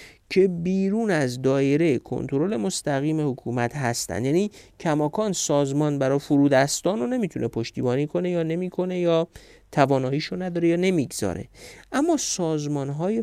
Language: Persian